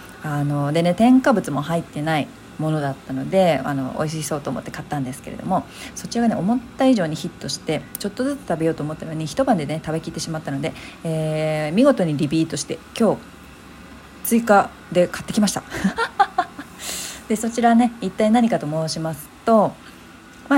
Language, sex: Japanese, female